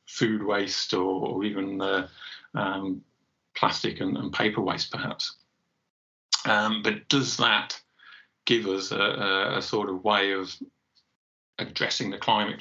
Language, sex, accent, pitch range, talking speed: English, male, British, 95-110 Hz, 130 wpm